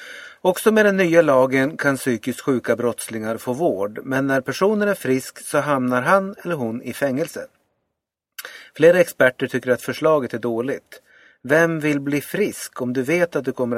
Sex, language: male, Swedish